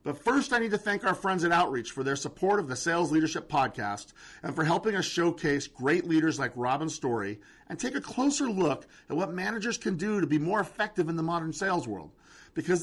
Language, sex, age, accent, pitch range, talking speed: English, male, 40-59, American, 120-170 Hz, 225 wpm